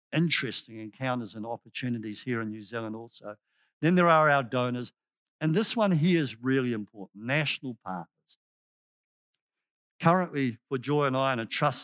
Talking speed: 155 wpm